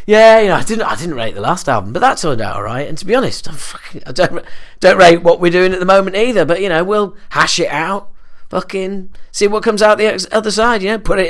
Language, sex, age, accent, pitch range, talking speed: English, male, 40-59, British, 130-190 Hz, 285 wpm